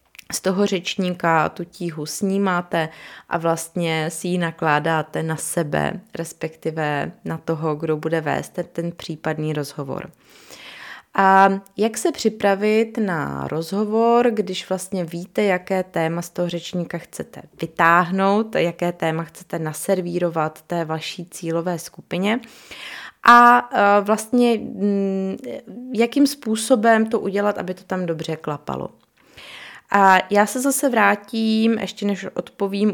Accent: native